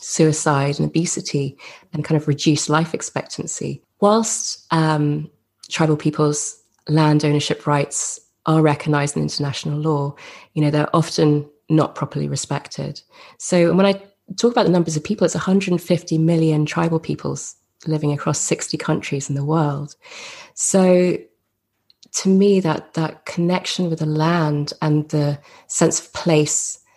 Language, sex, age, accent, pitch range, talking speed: English, female, 20-39, British, 150-170 Hz, 140 wpm